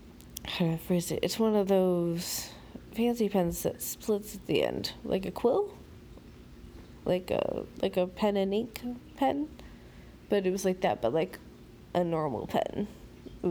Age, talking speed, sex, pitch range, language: 20-39, 165 wpm, female, 180-220 Hz, English